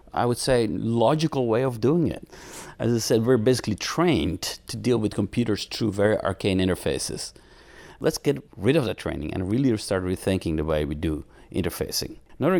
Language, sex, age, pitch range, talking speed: English, male, 40-59, 95-125 Hz, 180 wpm